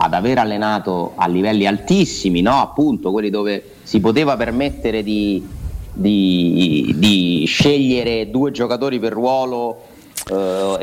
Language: Italian